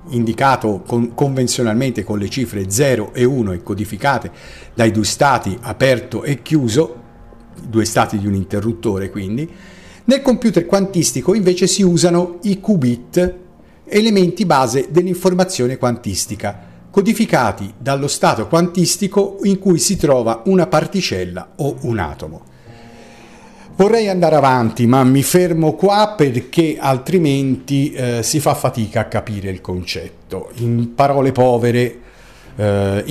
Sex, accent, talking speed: male, native, 125 wpm